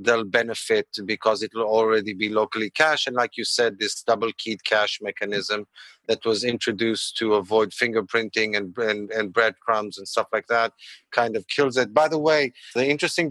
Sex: male